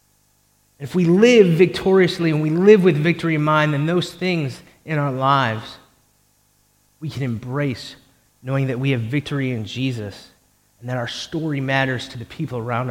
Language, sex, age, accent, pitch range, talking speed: English, male, 30-49, American, 120-150 Hz, 165 wpm